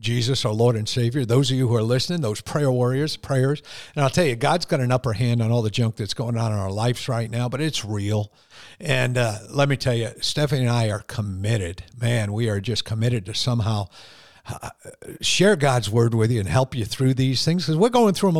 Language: English